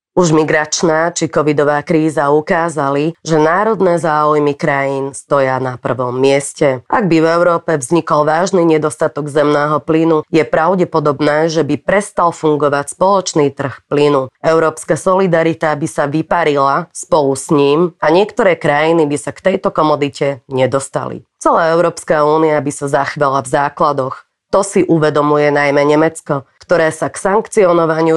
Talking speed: 140 wpm